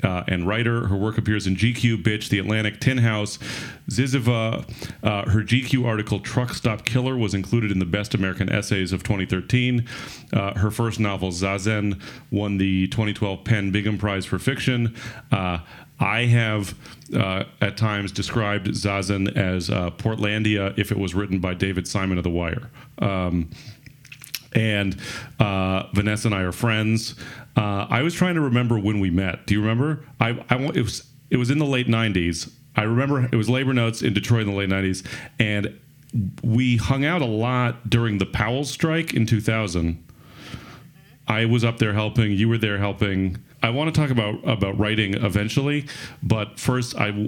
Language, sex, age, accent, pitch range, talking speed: English, male, 40-59, American, 100-125 Hz, 175 wpm